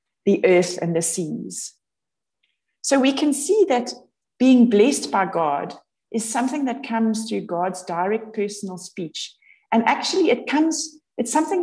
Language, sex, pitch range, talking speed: English, female, 185-240 Hz, 150 wpm